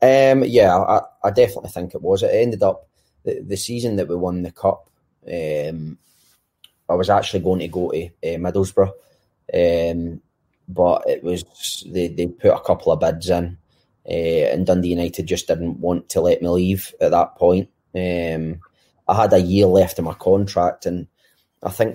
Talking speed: 185 wpm